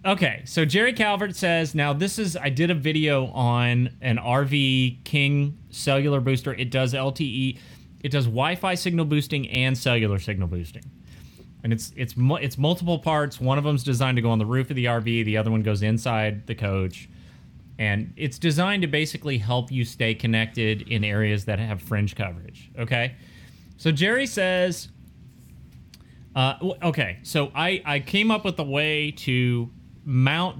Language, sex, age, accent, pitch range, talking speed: English, male, 30-49, American, 120-155 Hz, 170 wpm